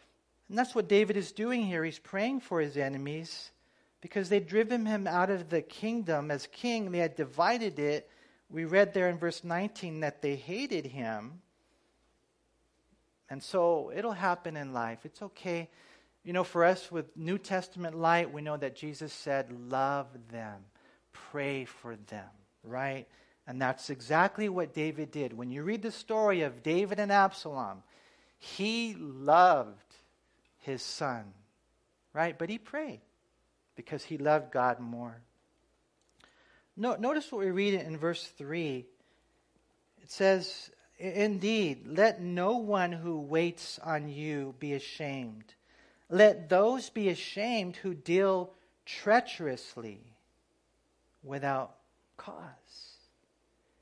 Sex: male